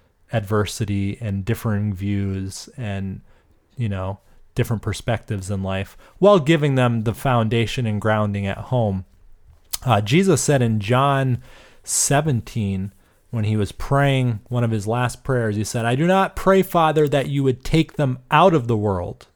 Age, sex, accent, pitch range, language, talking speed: 30-49, male, American, 105-135 Hz, English, 160 wpm